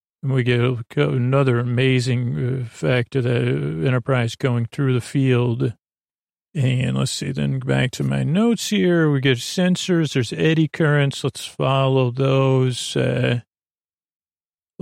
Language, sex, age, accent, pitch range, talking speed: English, male, 40-59, American, 120-140 Hz, 130 wpm